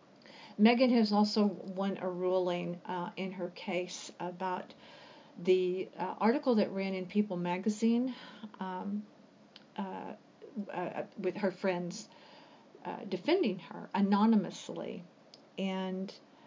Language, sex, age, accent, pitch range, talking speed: English, female, 50-69, American, 180-210 Hz, 110 wpm